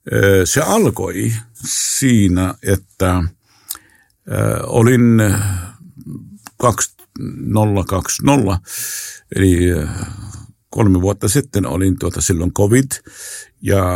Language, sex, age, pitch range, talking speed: Finnish, male, 50-69, 95-110 Hz, 65 wpm